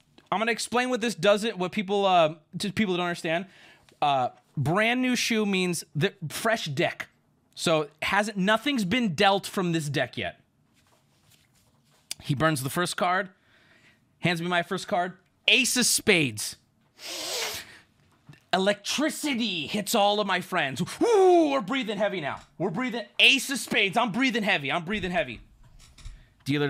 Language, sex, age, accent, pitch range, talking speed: English, male, 30-49, American, 175-270 Hz, 150 wpm